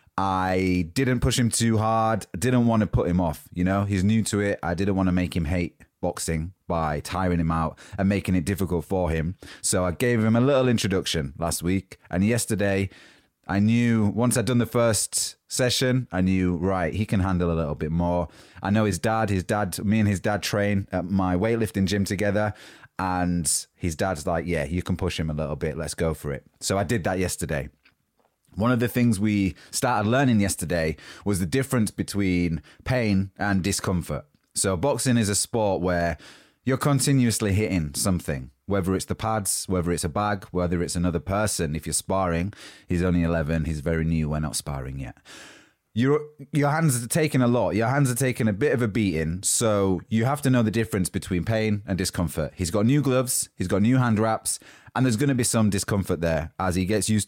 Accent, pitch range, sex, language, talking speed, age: British, 90-115 Hz, male, English, 210 wpm, 30-49